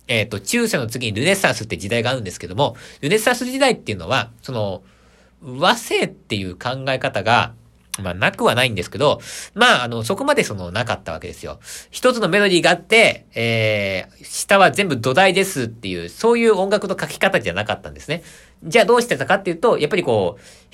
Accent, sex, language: native, male, Japanese